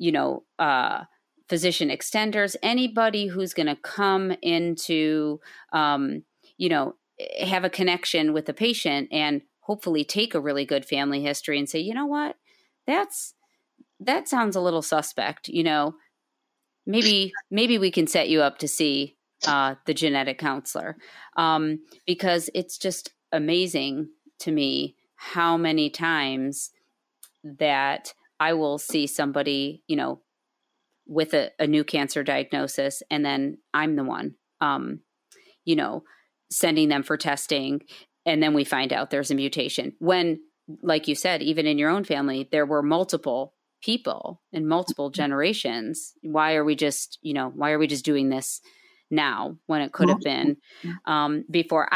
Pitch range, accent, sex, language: 145-190 Hz, American, female, English